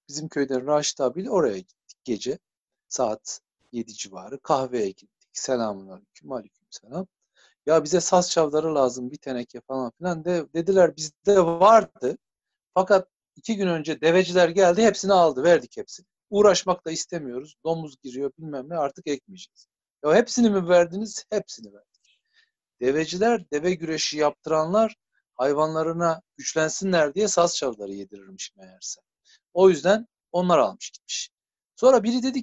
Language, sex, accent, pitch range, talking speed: Turkish, male, native, 140-190 Hz, 135 wpm